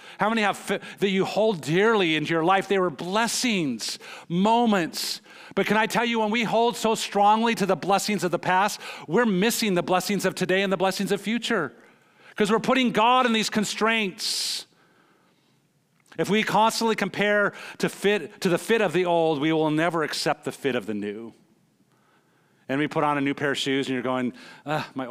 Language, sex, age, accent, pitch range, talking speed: English, male, 40-59, American, 135-195 Hz, 200 wpm